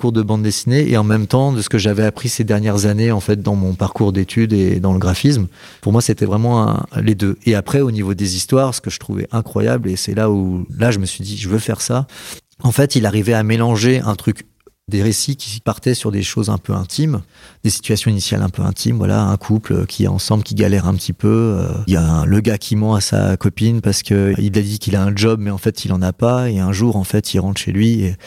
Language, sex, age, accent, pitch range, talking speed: French, male, 30-49, French, 95-115 Hz, 280 wpm